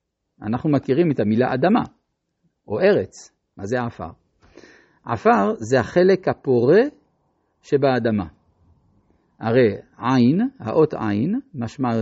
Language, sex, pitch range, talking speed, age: Hebrew, male, 115-170 Hz, 100 wpm, 50-69